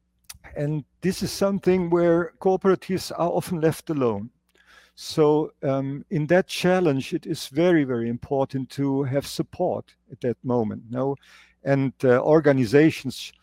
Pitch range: 125-170 Hz